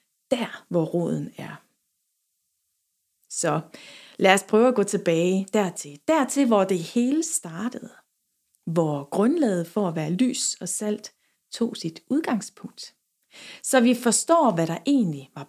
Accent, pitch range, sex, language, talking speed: Danish, 170-230 Hz, female, English, 140 wpm